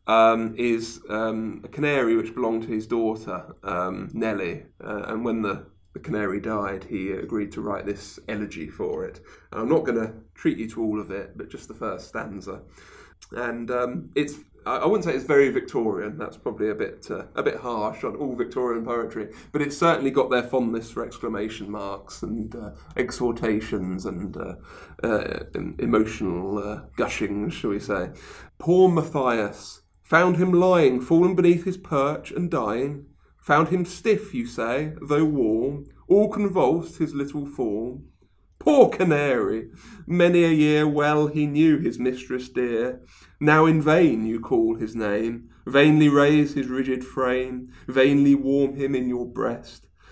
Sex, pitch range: male, 110-150 Hz